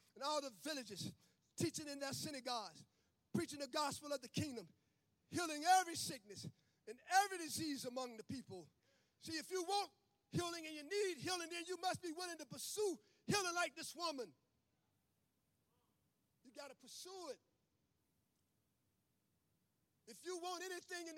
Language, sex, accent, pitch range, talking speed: English, male, American, 255-335 Hz, 150 wpm